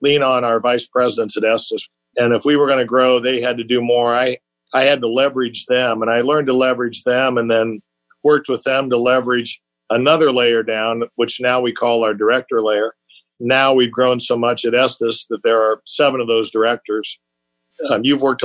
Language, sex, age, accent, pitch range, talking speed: English, male, 50-69, American, 115-135 Hz, 210 wpm